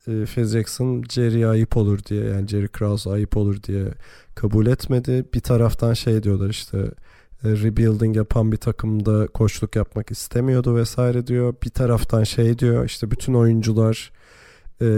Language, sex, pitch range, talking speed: Turkish, male, 110-125 Hz, 150 wpm